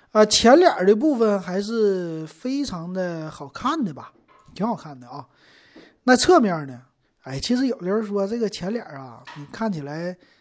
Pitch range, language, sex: 155-215 Hz, Chinese, male